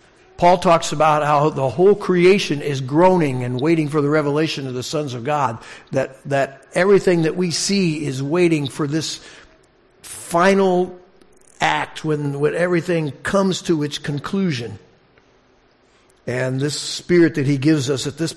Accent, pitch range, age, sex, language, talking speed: American, 125-155 Hz, 60-79, male, English, 155 wpm